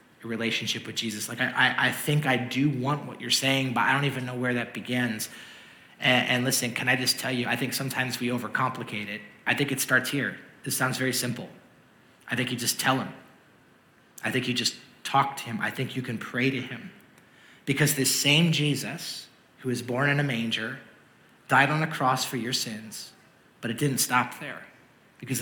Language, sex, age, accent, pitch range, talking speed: English, male, 30-49, American, 120-145 Hz, 210 wpm